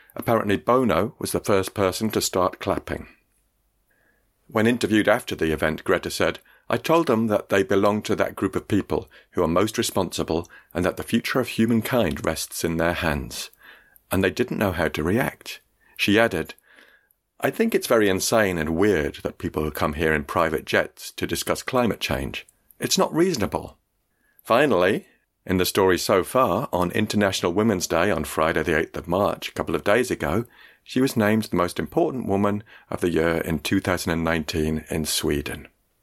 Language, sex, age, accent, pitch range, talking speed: English, male, 50-69, British, 80-110 Hz, 175 wpm